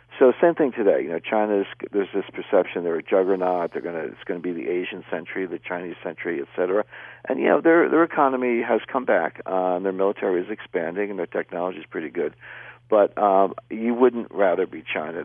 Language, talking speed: English, 215 wpm